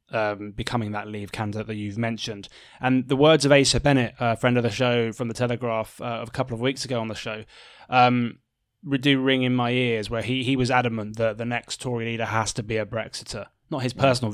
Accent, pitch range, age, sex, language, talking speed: British, 115-135 Hz, 20-39, male, English, 240 wpm